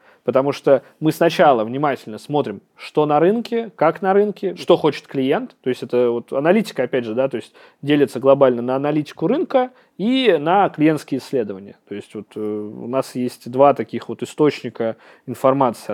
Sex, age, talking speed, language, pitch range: male, 20-39, 170 wpm, Russian, 125-160 Hz